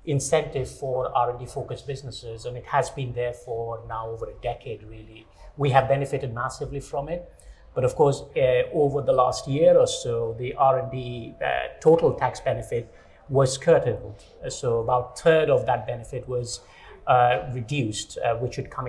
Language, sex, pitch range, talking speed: English, male, 120-140 Hz, 170 wpm